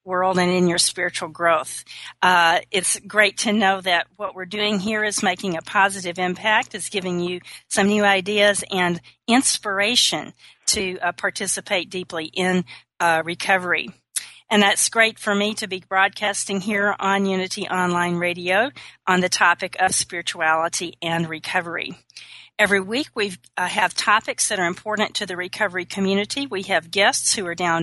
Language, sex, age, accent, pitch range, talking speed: English, female, 40-59, American, 180-210 Hz, 160 wpm